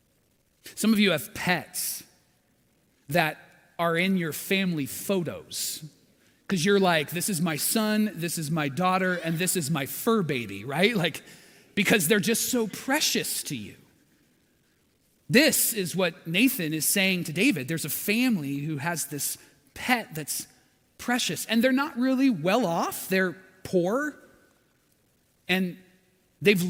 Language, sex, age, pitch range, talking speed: English, male, 30-49, 155-210 Hz, 145 wpm